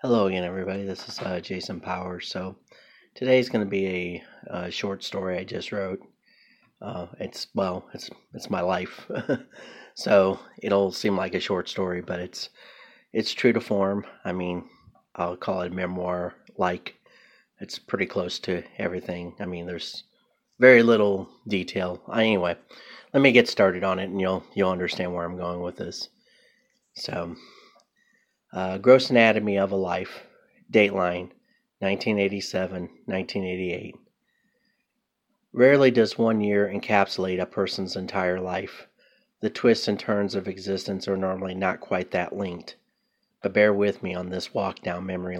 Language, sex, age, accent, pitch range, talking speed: English, male, 30-49, American, 90-105 Hz, 150 wpm